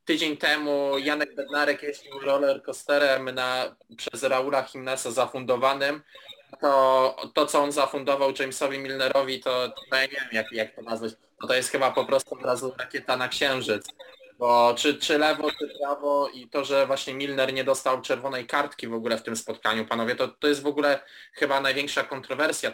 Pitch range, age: 135-155 Hz, 20-39